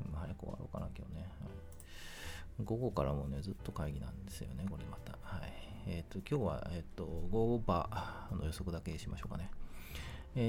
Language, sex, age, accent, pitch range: Japanese, male, 40-59, native, 80-100 Hz